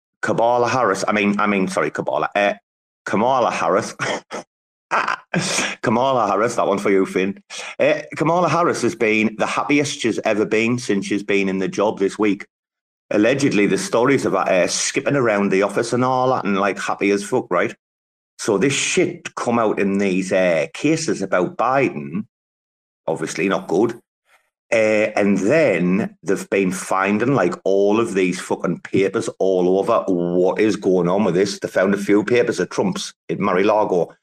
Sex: male